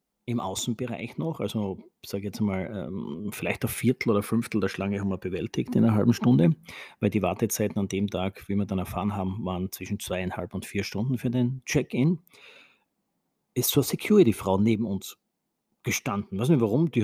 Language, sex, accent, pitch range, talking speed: German, male, Austrian, 100-130 Hz, 185 wpm